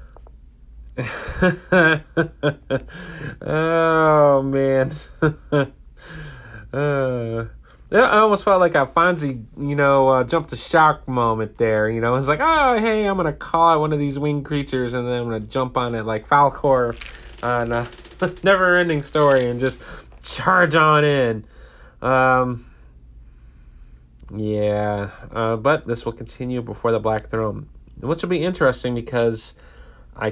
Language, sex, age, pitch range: English, male, 30-49, 105-140 Hz